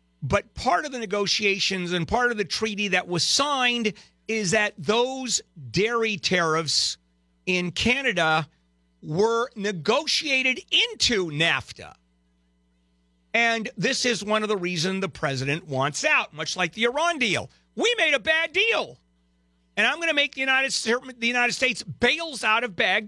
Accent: American